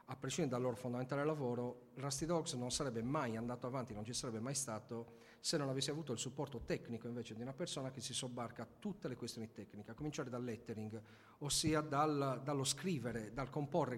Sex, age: male, 40-59